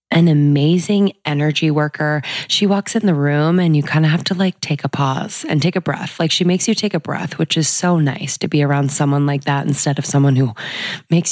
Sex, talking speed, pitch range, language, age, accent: female, 240 wpm, 135-155 Hz, English, 20-39, American